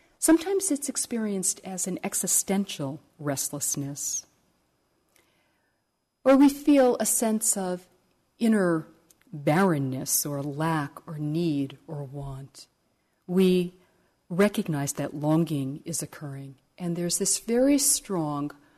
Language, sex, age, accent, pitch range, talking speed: English, female, 50-69, American, 140-185 Hz, 100 wpm